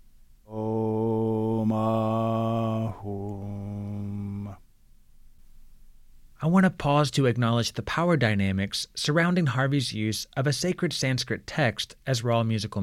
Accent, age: American, 30-49